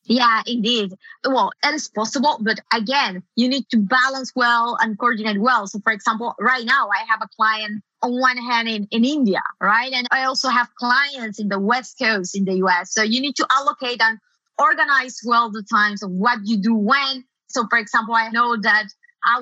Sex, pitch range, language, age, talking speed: female, 210-250 Hz, English, 20-39, 200 wpm